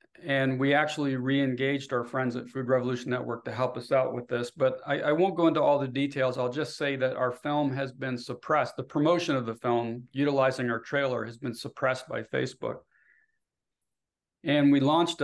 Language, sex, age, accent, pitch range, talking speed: English, male, 40-59, American, 125-140 Hz, 195 wpm